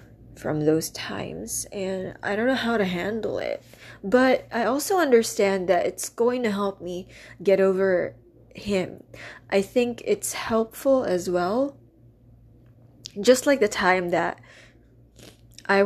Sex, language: female, English